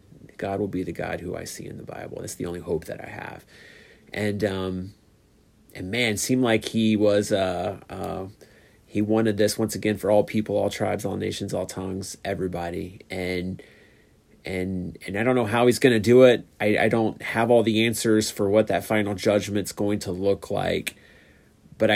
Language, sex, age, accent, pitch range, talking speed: English, male, 30-49, American, 95-110 Hz, 195 wpm